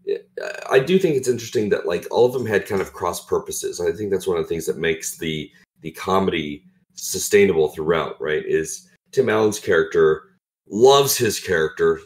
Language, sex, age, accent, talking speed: English, male, 40-59, American, 185 wpm